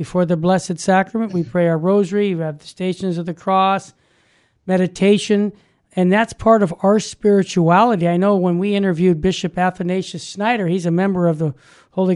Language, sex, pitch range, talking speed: English, male, 175-220 Hz, 180 wpm